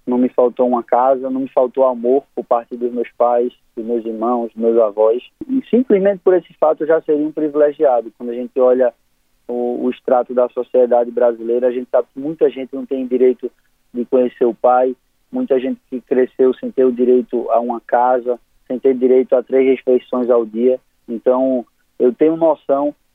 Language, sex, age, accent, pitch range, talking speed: Portuguese, male, 20-39, Brazilian, 125-150 Hz, 195 wpm